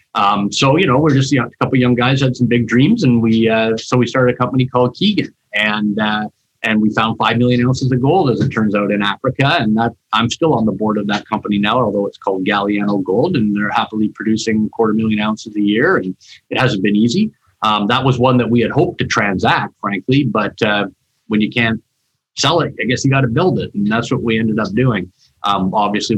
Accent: American